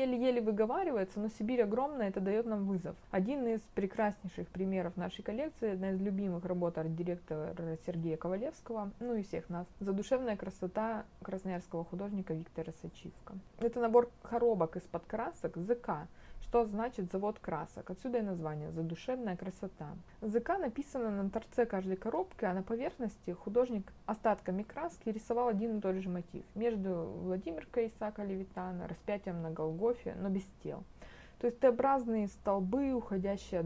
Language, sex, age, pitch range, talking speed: Russian, female, 20-39, 180-225 Hz, 145 wpm